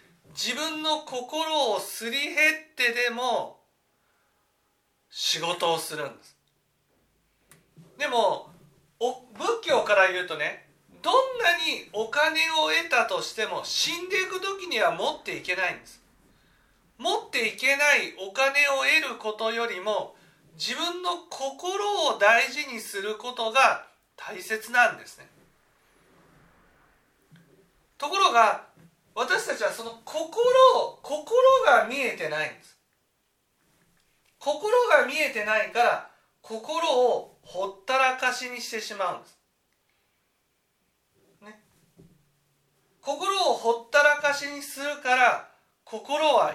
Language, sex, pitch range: Japanese, male, 205-300 Hz